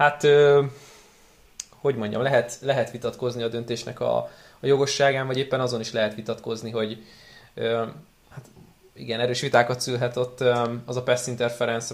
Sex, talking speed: male, 155 wpm